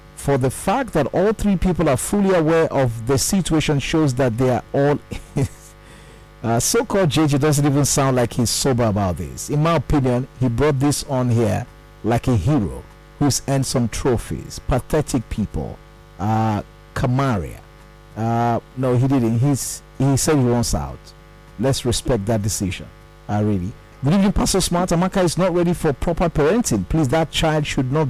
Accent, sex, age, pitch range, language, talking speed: Nigerian, male, 50-69, 120-160 Hz, English, 175 wpm